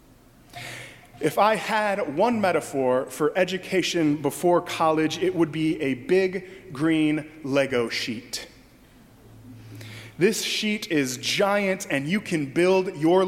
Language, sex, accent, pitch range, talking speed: English, male, American, 145-195 Hz, 115 wpm